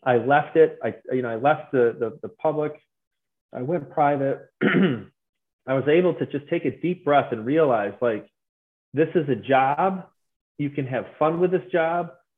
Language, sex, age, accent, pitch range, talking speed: English, male, 40-59, American, 130-170 Hz, 185 wpm